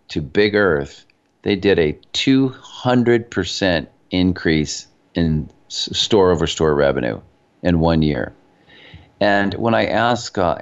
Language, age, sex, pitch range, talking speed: English, 50-69, male, 85-110 Hz, 120 wpm